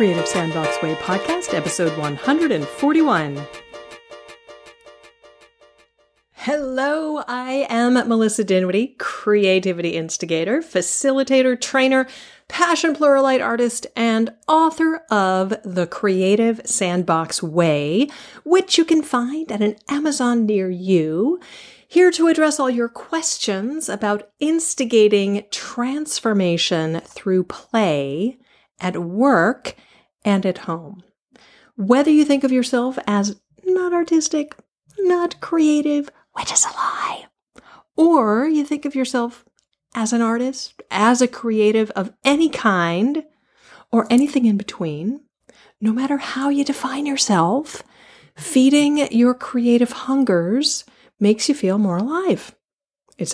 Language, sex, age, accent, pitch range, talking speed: English, female, 40-59, American, 190-290 Hz, 110 wpm